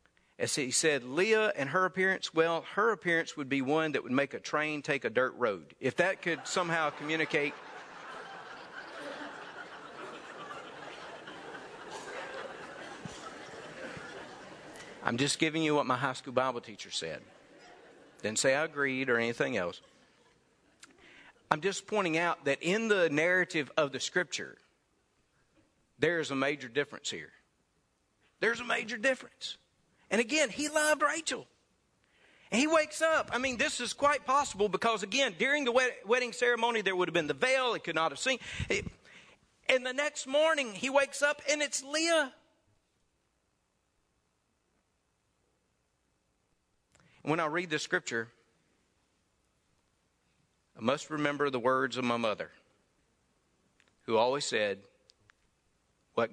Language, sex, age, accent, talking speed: English, male, 50-69, American, 135 wpm